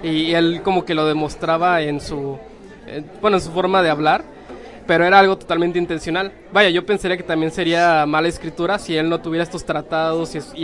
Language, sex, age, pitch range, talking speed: English, male, 20-39, 160-185 Hz, 190 wpm